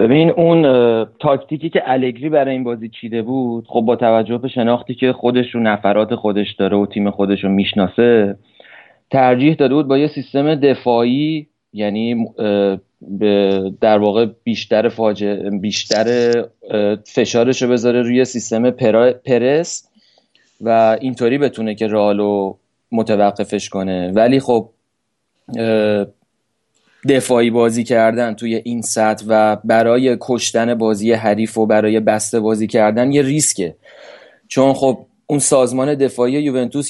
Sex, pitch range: male, 110-130 Hz